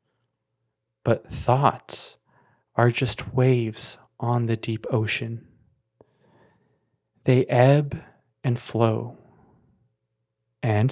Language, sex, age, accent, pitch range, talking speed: English, male, 30-49, American, 110-130 Hz, 75 wpm